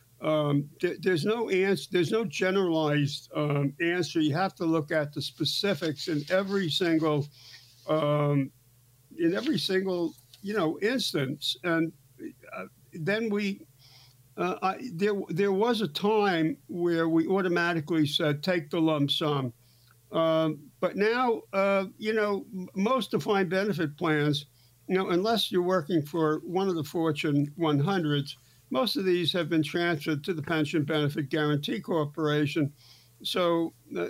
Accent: American